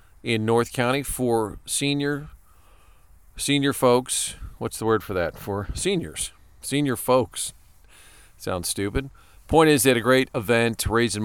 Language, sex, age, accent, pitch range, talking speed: English, male, 40-59, American, 105-140 Hz, 140 wpm